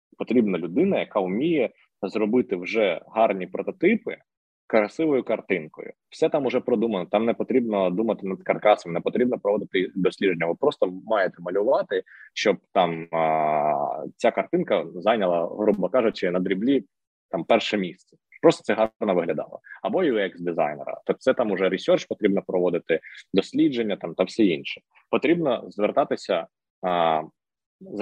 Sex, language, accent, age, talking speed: male, Ukrainian, native, 20-39, 135 wpm